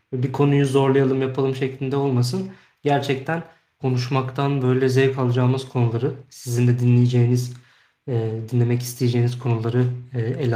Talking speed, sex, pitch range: 110 wpm, male, 125-150 Hz